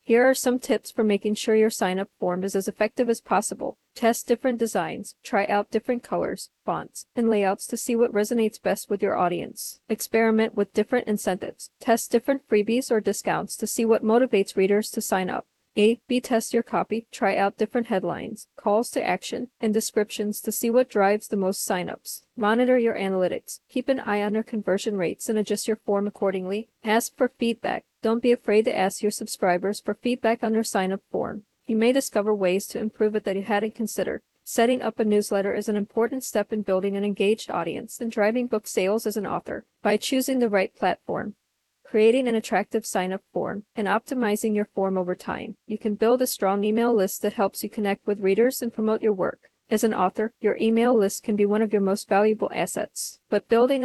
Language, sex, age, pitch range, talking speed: English, female, 40-59, 205-230 Hz, 205 wpm